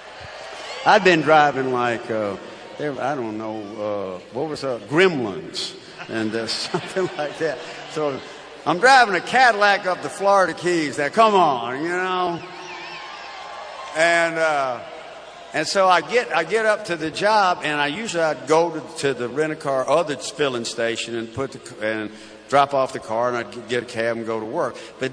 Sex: male